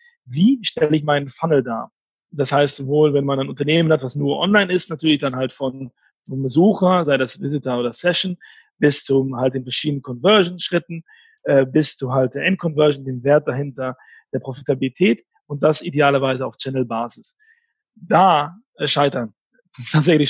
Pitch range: 135-165 Hz